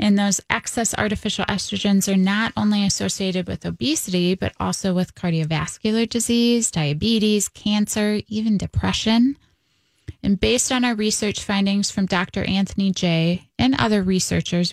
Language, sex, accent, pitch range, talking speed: English, female, American, 185-215 Hz, 135 wpm